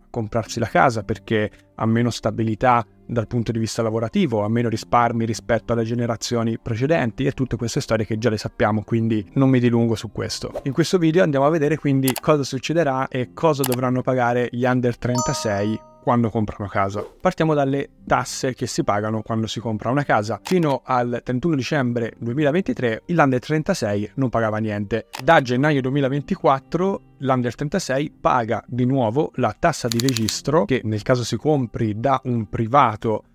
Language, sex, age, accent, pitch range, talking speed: Italian, male, 20-39, native, 115-135 Hz, 165 wpm